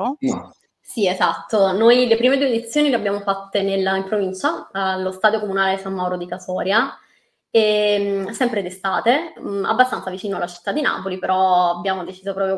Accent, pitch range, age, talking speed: native, 185-235 Hz, 20-39, 165 wpm